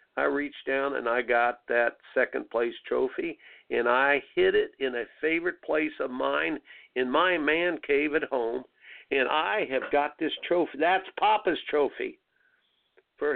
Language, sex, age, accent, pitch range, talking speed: English, male, 50-69, American, 140-185 Hz, 160 wpm